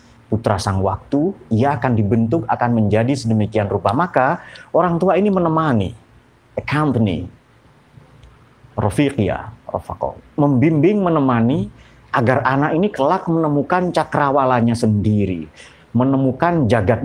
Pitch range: 110-145 Hz